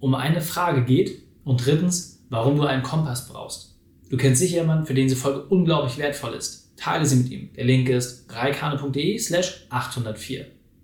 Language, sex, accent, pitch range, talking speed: German, male, German, 125-165 Hz, 175 wpm